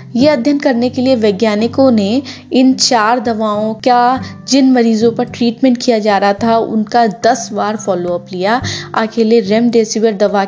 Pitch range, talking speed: 210-255 Hz, 150 wpm